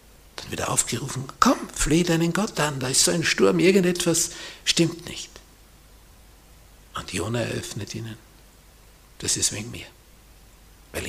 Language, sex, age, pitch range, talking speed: German, male, 60-79, 100-135 Hz, 135 wpm